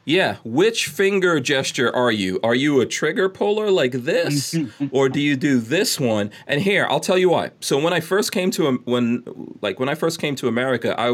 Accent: American